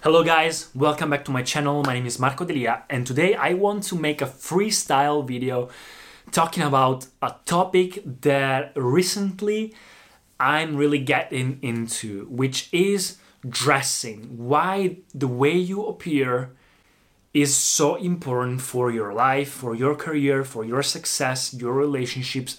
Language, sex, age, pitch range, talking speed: Italian, male, 30-49, 125-150 Hz, 140 wpm